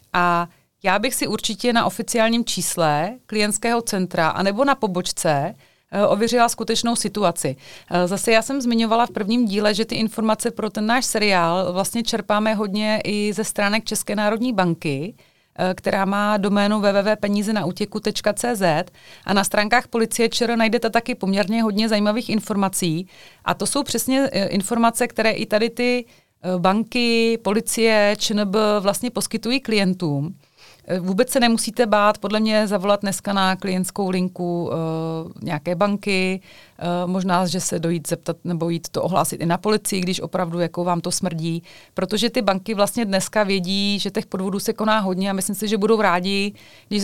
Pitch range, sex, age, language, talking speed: 180-220 Hz, female, 30-49, Czech, 155 wpm